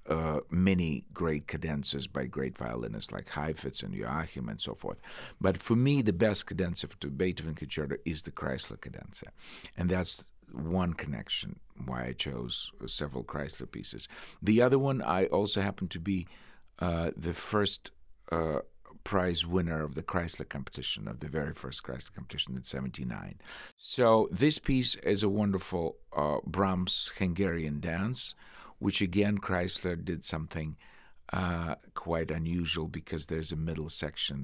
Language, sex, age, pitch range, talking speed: English, male, 50-69, 75-95 Hz, 150 wpm